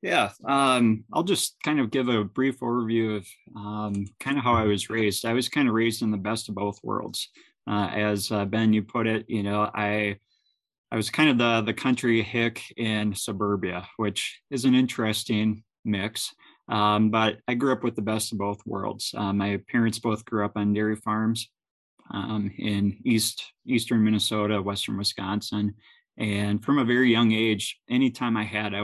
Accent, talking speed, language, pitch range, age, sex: American, 190 wpm, English, 100-115 Hz, 20-39, male